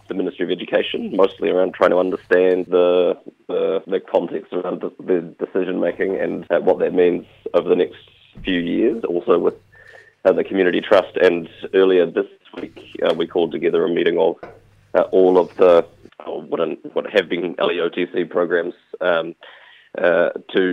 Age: 30-49